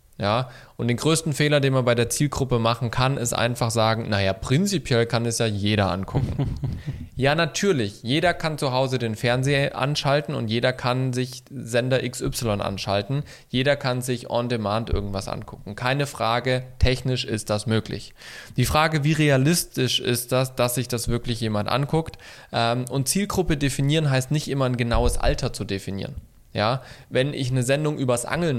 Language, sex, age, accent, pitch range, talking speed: German, male, 20-39, German, 115-140 Hz, 170 wpm